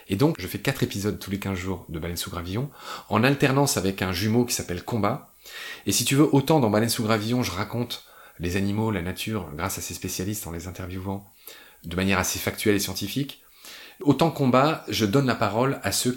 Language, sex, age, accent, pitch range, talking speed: French, male, 30-49, French, 95-110 Hz, 215 wpm